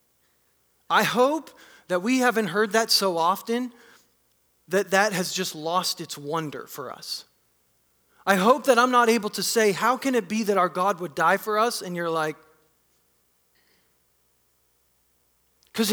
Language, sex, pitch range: English, male, 160-225 Hz